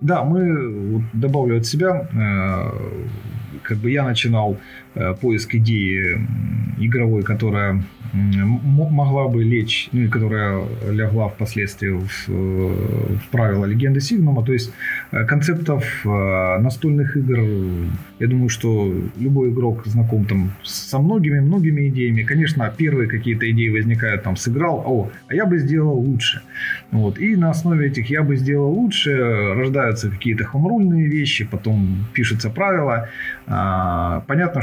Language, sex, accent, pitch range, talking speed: Russian, male, native, 105-140 Hz, 130 wpm